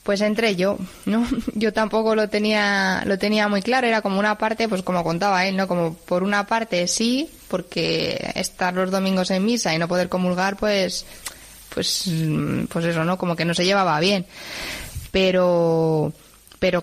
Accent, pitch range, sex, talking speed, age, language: Spanish, 175-205 Hz, female, 180 wpm, 20-39, Spanish